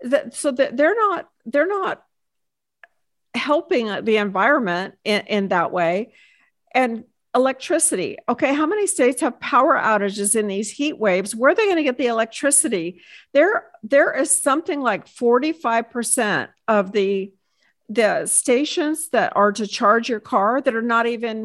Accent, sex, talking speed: American, female, 150 wpm